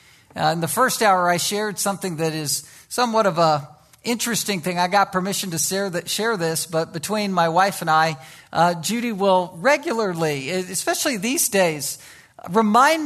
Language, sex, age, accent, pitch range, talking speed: English, male, 50-69, American, 170-235 Hz, 160 wpm